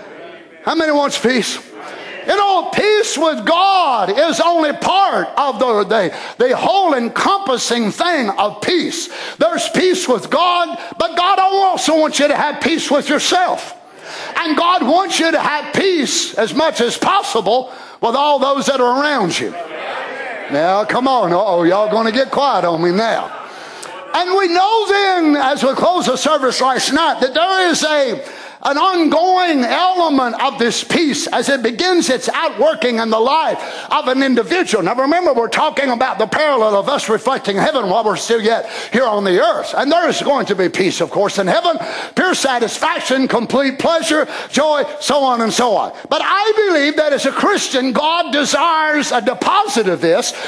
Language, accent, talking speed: English, American, 180 wpm